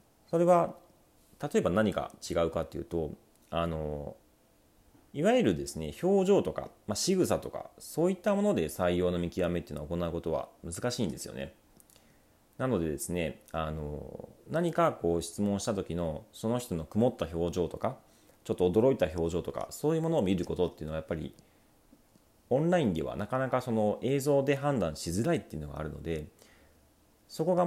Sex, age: male, 40-59